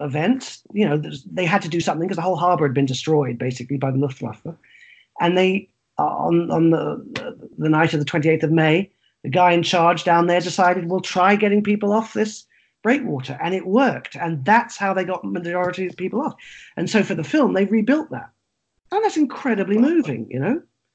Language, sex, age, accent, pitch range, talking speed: English, male, 40-59, British, 155-220 Hz, 210 wpm